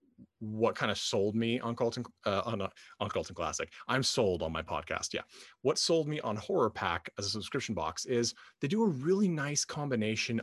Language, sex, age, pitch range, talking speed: English, male, 30-49, 100-130 Hz, 200 wpm